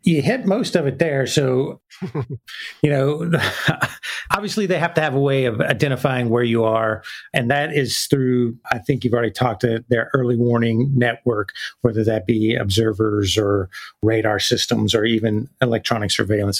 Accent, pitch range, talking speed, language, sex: American, 110-135 Hz, 165 wpm, English, male